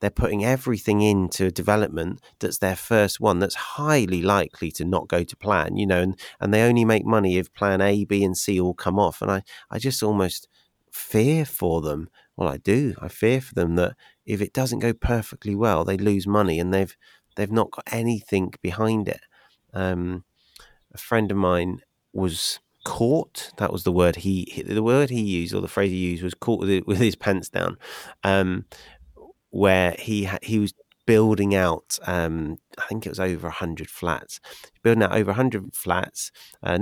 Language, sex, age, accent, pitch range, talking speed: English, male, 30-49, British, 90-105 Hz, 190 wpm